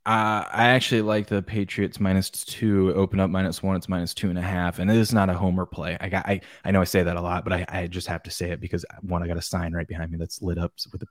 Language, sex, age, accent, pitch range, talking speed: English, male, 20-39, American, 85-100 Hz, 310 wpm